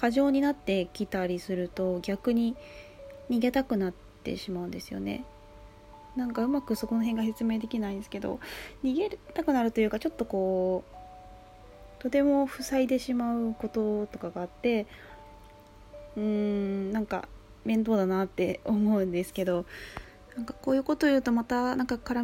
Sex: female